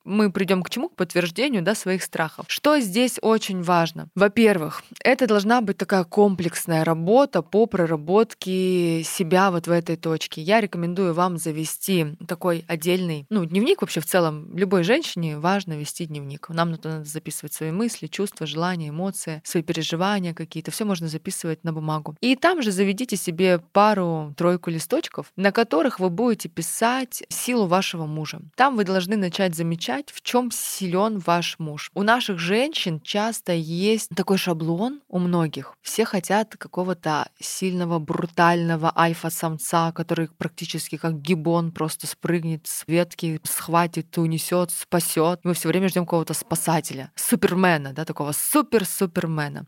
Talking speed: 145 wpm